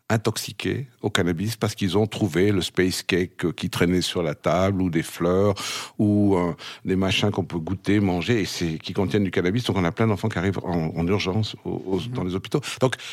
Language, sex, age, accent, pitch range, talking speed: French, male, 60-79, French, 95-130 Hz, 220 wpm